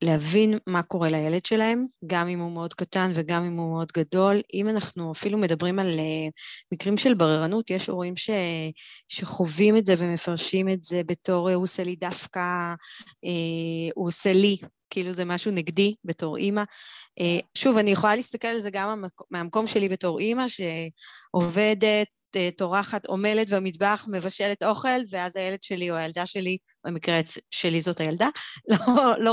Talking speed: 160 wpm